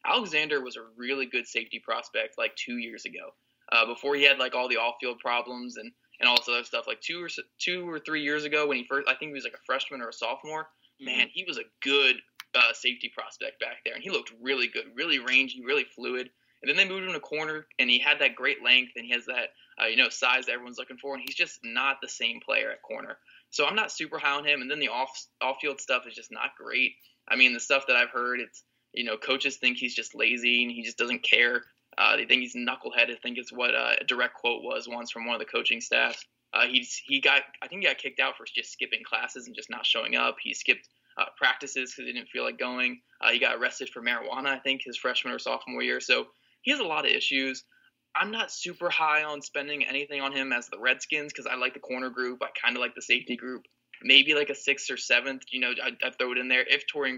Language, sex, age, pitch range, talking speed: English, male, 20-39, 125-150 Hz, 260 wpm